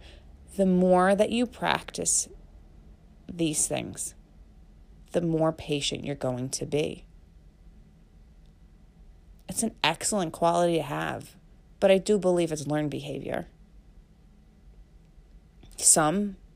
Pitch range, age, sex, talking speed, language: 135-205 Hz, 30-49, female, 100 wpm, English